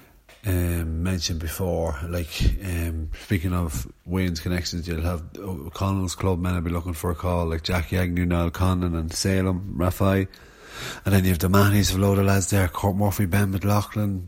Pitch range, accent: 90-100 Hz, Irish